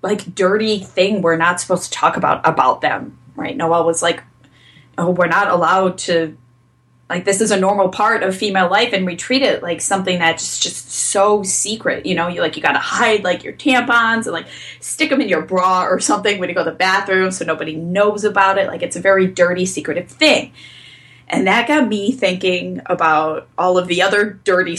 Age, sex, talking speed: 10-29, female, 215 wpm